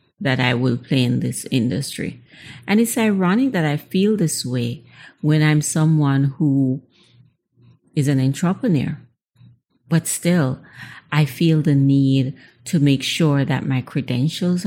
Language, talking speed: English, 140 wpm